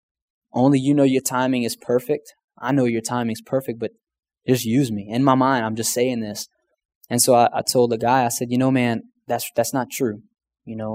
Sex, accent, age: male, American, 20-39